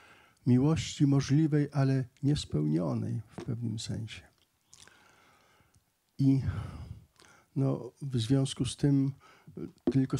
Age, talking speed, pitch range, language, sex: 50-69, 80 wpm, 120-140 Hz, Polish, male